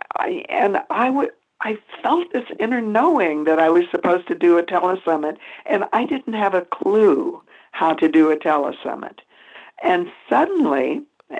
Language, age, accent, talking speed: English, 60-79, American, 160 wpm